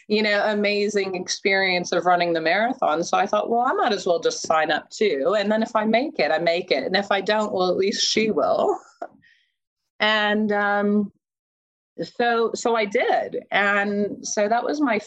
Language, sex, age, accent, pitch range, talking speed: English, female, 30-49, American, 165-220 Hz, 195 wpm